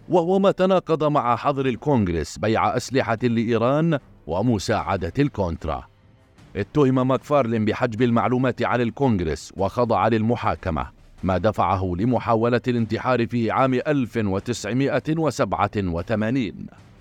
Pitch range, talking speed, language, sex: 110-135 Hz, 90 wpm, Arabic, male